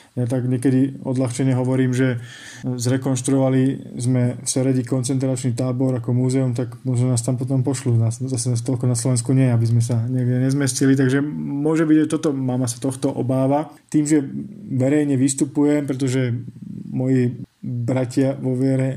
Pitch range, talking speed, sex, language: 125-140 Hz, 160 wpm, male, Slovak